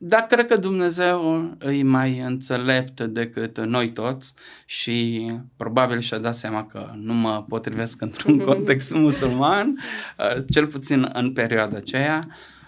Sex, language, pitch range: male, Romanian, 115-150 Hz